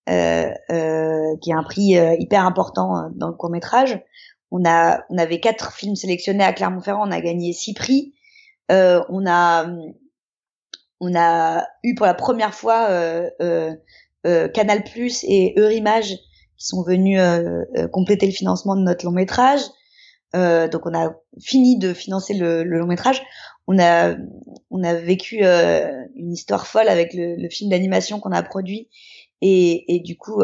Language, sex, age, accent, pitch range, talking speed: French, female, 20-39, French, 170-200 Hz, 170 wpm